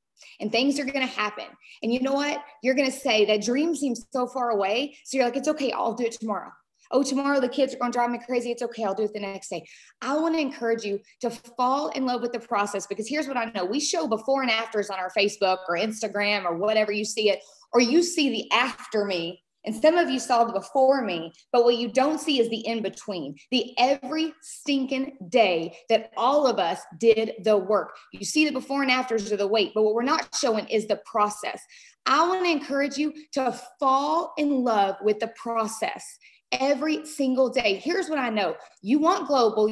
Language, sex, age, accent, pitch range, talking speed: English, female, 20-39, American, 225-300 Hz, 230 wpm